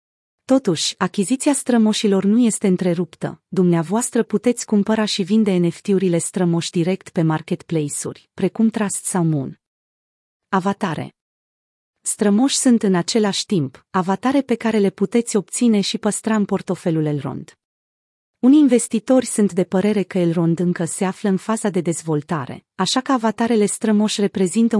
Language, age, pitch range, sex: Romanian, 30-49, 175-225 Hz, female